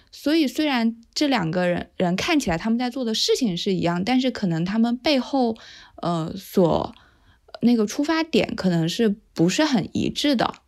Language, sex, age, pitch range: Chinese, female, 20-39, 180-240 Hz